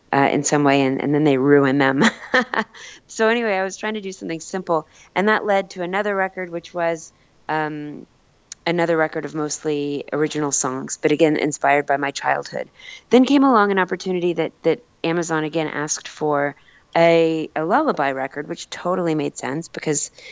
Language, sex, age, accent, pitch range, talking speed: English, female, 30-49, American, 150-180 Hz, 175 wpm